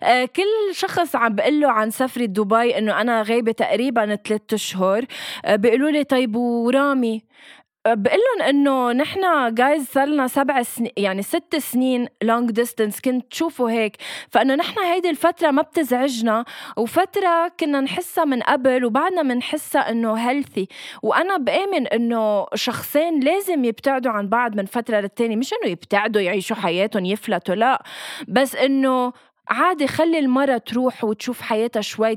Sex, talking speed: female, 140 wpm